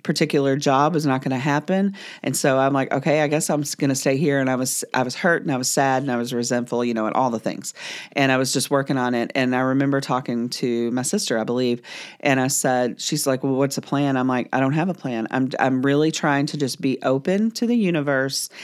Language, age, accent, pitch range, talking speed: English, 40-59, American, 130-150 Hz, 265 wpm